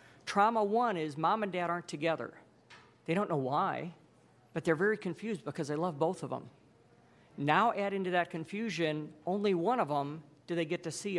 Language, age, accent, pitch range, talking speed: English, 50-69, American, 155-200 Hz, 195 wpm